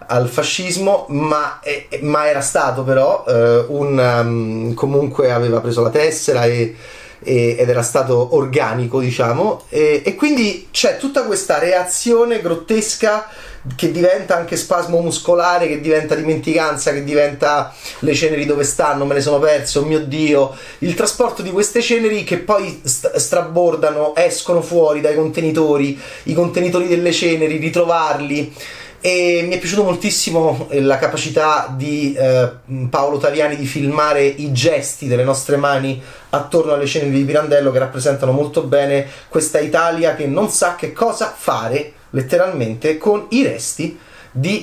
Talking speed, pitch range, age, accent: 150 wpm, 135-170 Hz, 30-49, native